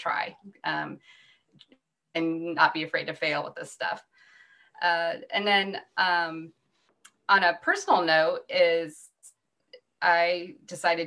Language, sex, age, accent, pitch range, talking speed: English, female, 20-39, American, 160-195 Hz, 120 wpm